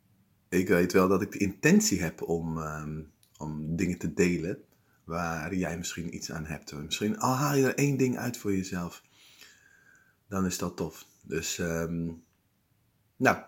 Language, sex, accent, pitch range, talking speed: Dutch, male, Dutch, 85-115 Hz, 165 wpm